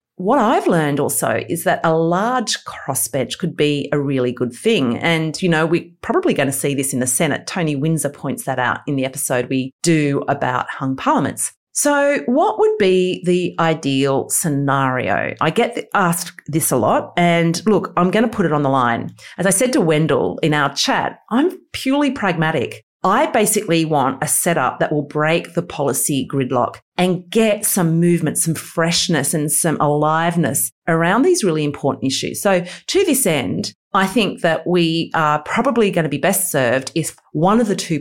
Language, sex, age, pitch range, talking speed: English, female, 30-49, 145-200 Hz, 190 wpm